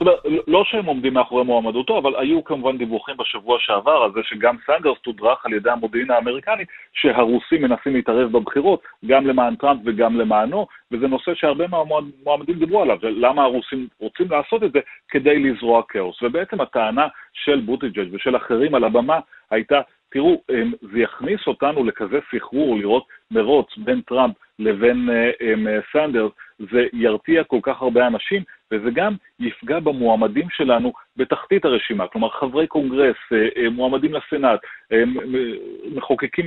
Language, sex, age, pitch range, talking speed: Hebrew, male, 40-59, 115-170 Hz, 145 wpm